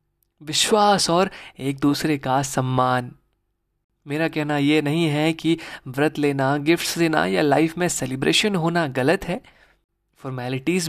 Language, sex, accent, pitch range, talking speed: Hindi, male, native, 140-170 Hz, 130 wpm